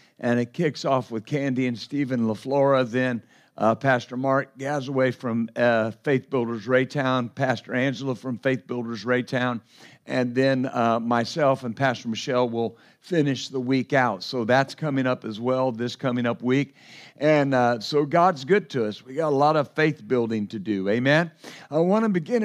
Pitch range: 125-155 Hz